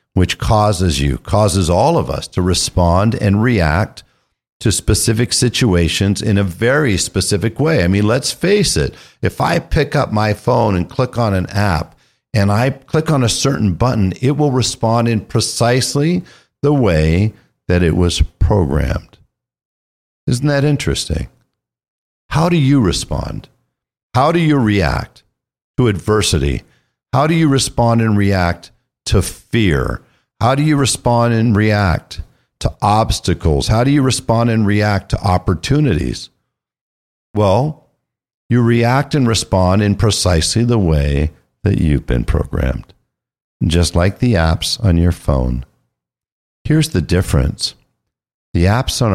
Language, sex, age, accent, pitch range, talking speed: English, male, 50-69, American, 85-120 Hz, 140 wpm